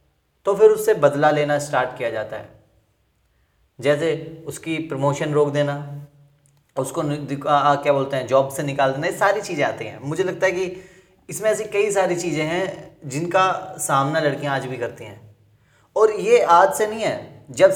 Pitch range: 135-195 Hz